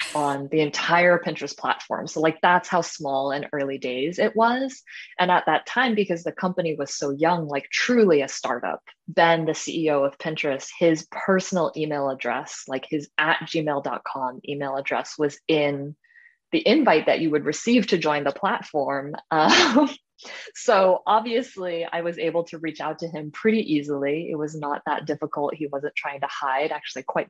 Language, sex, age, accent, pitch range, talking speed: English, female, 20-39, American, 145-170 Hz, 175 wpm